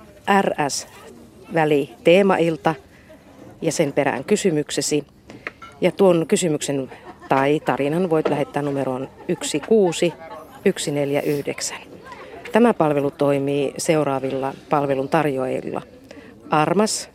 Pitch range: 140-185 Hz